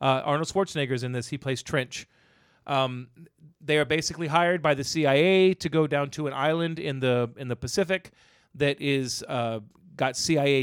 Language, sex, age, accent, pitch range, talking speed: English, male, 40-59, American, 125-150 Hz, 180 wpm